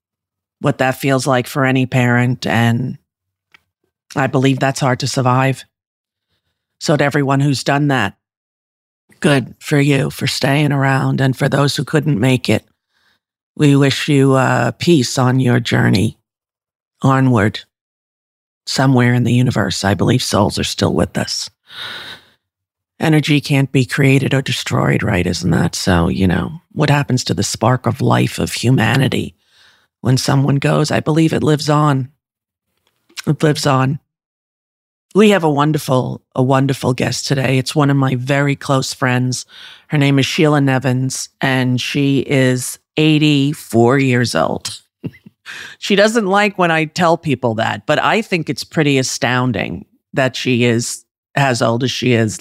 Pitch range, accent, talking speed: 120-140 Hz, American, 150 wpm